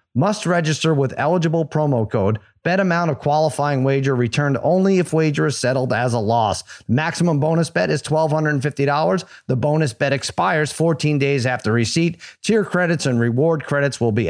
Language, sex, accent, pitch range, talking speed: English, male, American, 125-170 Hz, 170 wpm